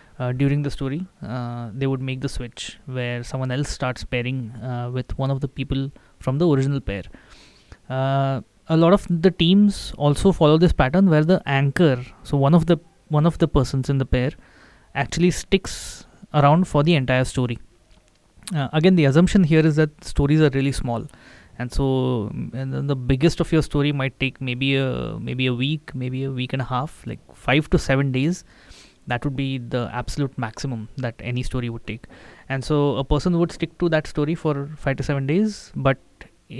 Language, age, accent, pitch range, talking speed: English, 20-39, Indian, 125-155 Hz, 195 wpm